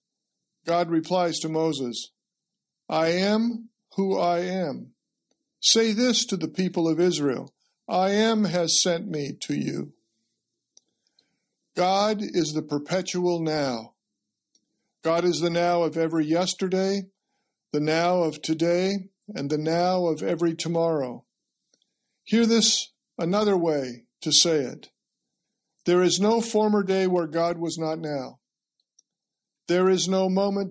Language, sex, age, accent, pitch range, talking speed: English, male, 50-69, American, 155-190 Hz, 130 wpm